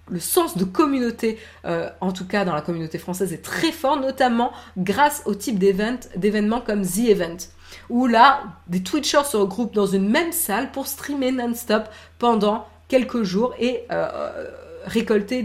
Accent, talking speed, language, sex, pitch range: French, 165 wpm, French, female, 190-270 Hz